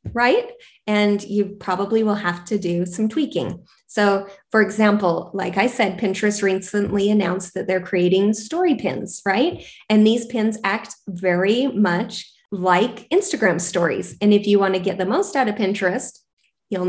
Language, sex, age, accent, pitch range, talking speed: English, female, 20-39, American, 190-230 Hz, 165 wpm